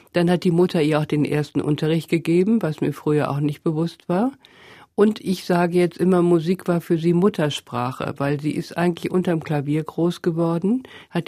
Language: German